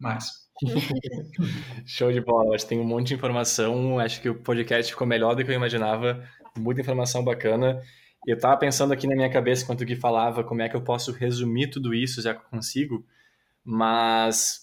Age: 20-39